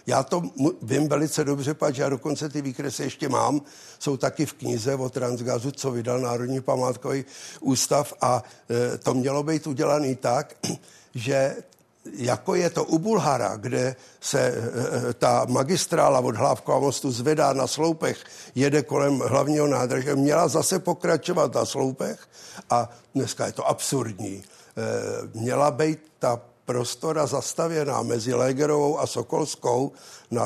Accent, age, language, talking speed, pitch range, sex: native, 60-79, Czech, 140 wpm, 125-150 Hz, male